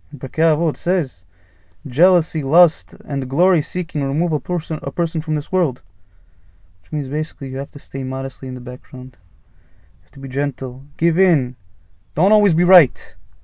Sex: male